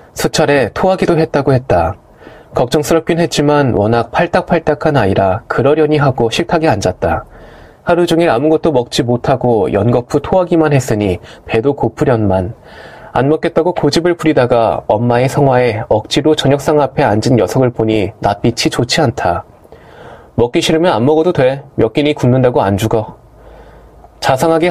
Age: 20-39